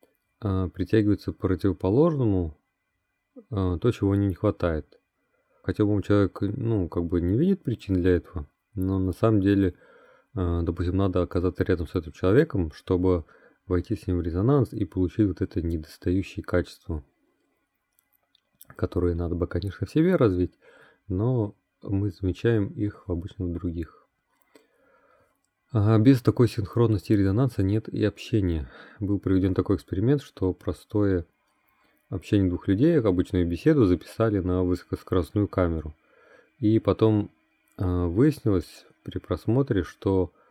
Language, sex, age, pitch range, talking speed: Russian, male, 30-49, 90-105 Hz, 130 wpm